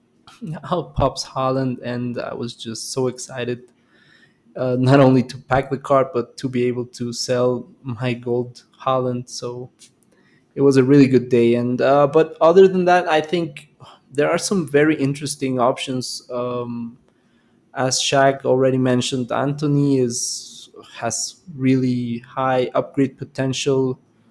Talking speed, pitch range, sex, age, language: 145 wpm, 125-135 Hz, male, 20-39, English